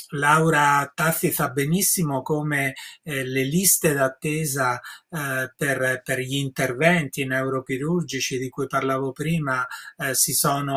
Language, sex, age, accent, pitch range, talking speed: Italian, male, 30-49, native, 135-165 Hz, 125 wpm